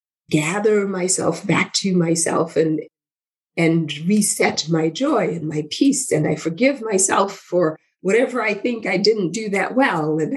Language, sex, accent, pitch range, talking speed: English, female, American, 170-230 Hz, 155 wpm